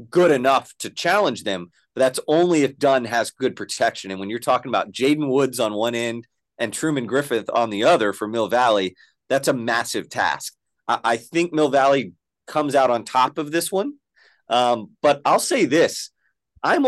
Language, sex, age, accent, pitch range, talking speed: English, male, 30-49, American, 115-150 Hz, 190 wpm